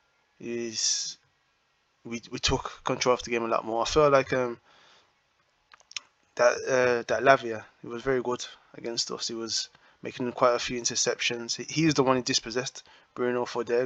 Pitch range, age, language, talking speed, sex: 110-125 Hz, 20-39, English, 180 wpm, male